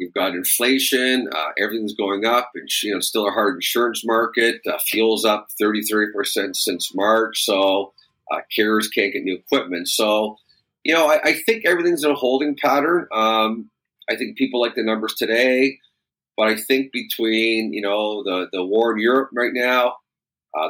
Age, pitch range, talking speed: 40-59, 100-130 Hz, 175 wpm